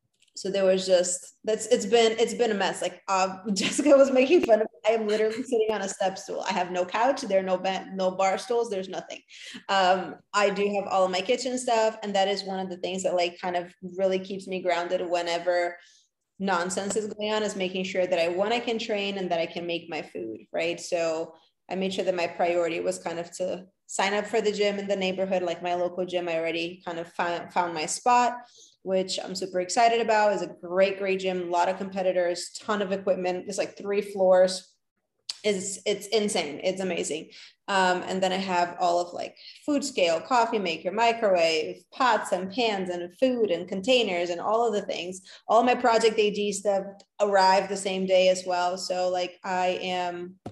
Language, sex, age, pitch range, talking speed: English, female, 20-39, 180-205 Hz, 215 wpm